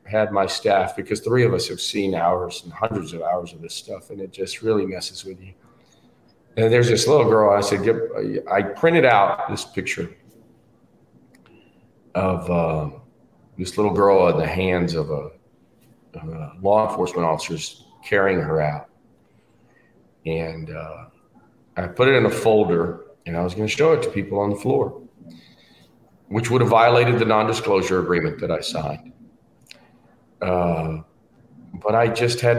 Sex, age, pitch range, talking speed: male, 40-59, 90-115 Hz, 165 wpm